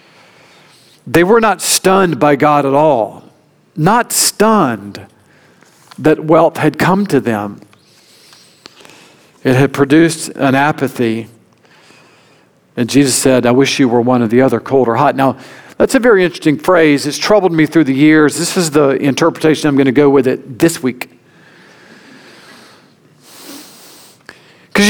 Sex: male